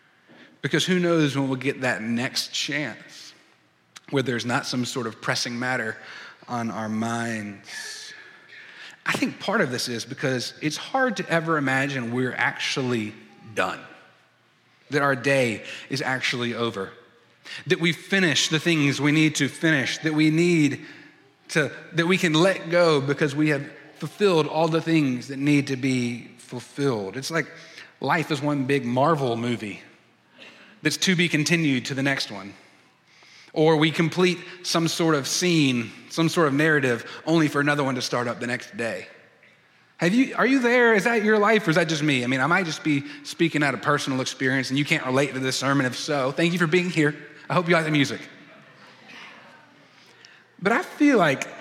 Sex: male